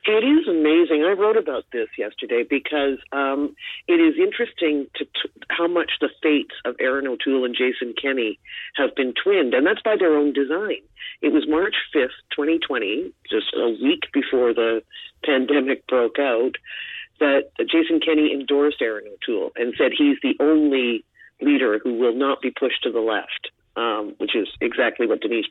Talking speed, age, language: 170 wpm, 40-59, English